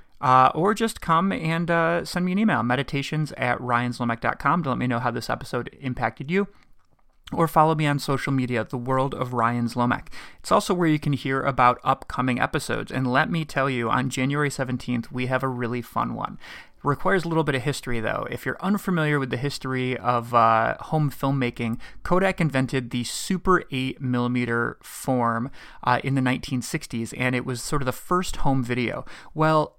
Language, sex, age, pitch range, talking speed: English, male, 30-49, 120-155 Hz, 185 wpm